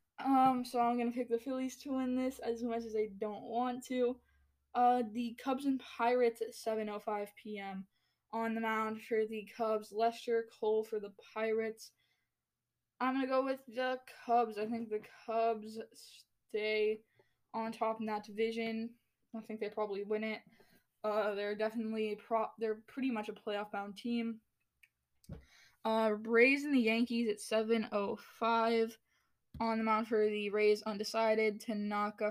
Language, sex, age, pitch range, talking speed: English, female, 10-29, 215-230 Hz, 155 wpm